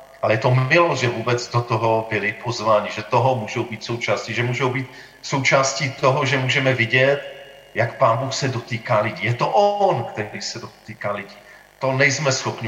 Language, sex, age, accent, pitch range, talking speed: Czech, male, 40-59, native, 110-135 Hz, 185 wpm